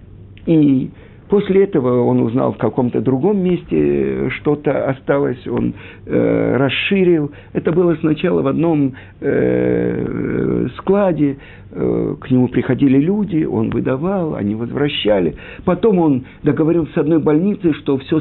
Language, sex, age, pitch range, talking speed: Russian, male, 50-69, 105-160 Hz, 125 wpm